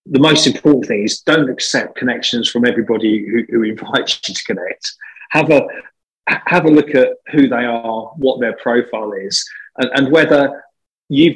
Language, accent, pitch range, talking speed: English, British, 115-150 Hz, 175 wpm